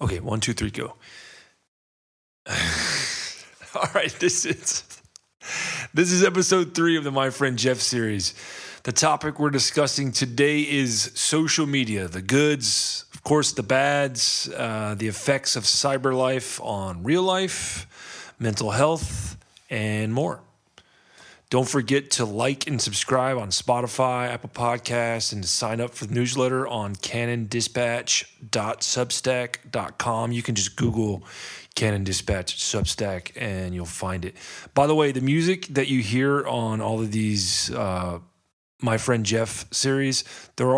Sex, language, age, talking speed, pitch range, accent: male, English, 30-49, 140 wpm, 105-135 Hz, American